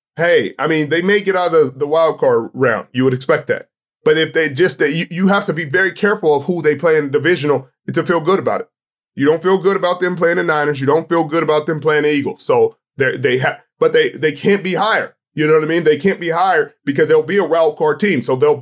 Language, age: English, 20-39